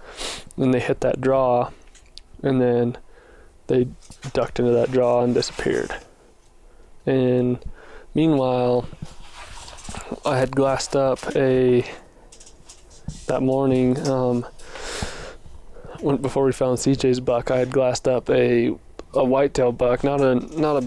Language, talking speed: English, 125 wpm